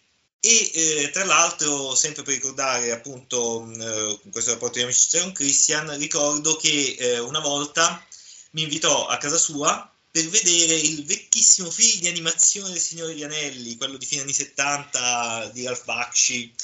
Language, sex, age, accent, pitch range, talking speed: Italian, male, 30-49, native, 125-165 Hz, 155 wpm